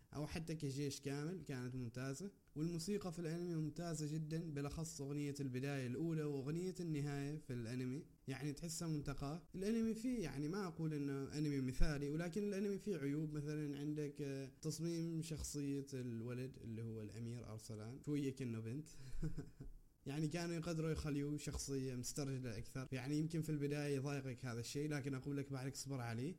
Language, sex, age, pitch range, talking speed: Arabic, male, 20-39, 135-165 Hz, 150 wpm